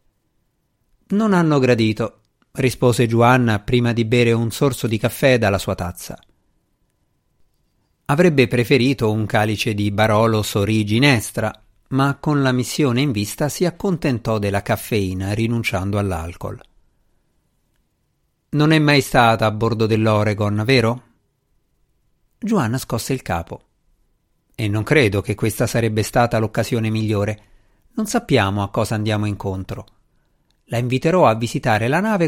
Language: Italian